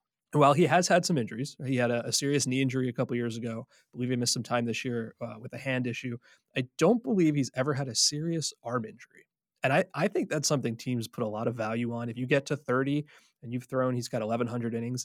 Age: 20-39